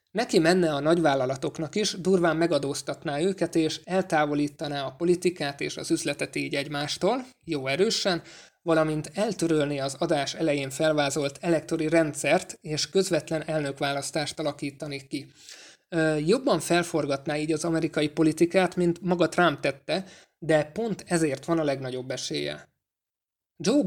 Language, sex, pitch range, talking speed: Hungarian, male, 145-170 Hz, 125 wpm